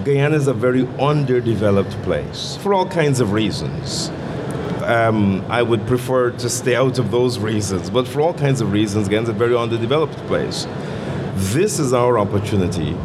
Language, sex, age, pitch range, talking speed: English, male, 50-69, 105-135 Hz, 170 wpm